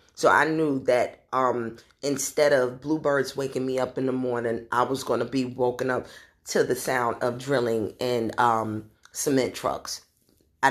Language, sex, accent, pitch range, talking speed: English, female, American, 125-150 Hz, 170 wpm